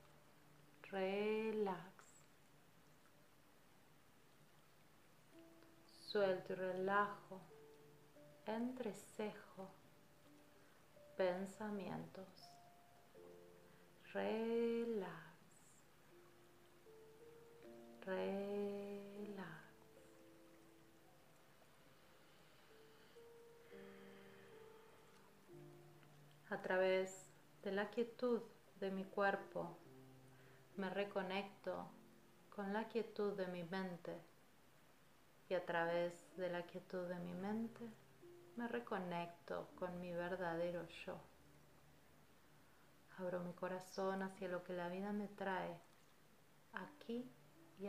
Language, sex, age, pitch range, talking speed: Spanish, female, 30-49, 145-200 Hz, 65 wpm